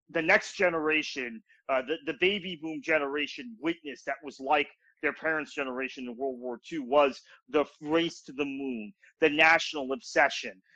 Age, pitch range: 30-49, 130-165 Hz